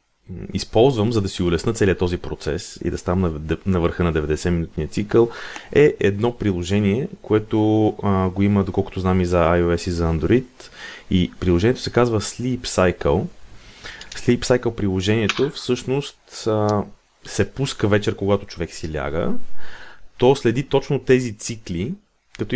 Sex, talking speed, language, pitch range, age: male, 145 wpm, Bulgarian, 90-110 Hz, 30-49